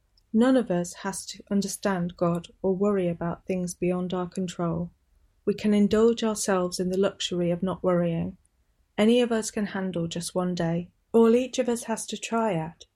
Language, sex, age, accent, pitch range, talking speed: English, female, 30-49, British, 170-205 Hz, 185 wpm